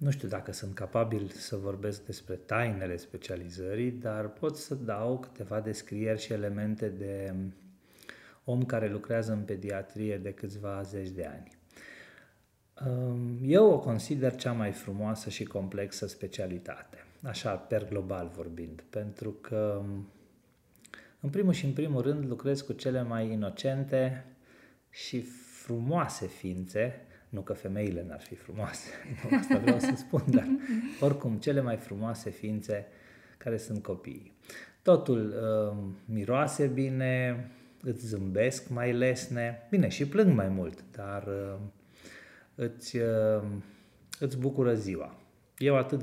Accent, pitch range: native, 100-125 Hz